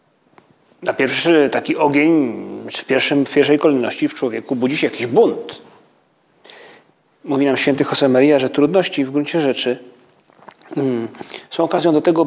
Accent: native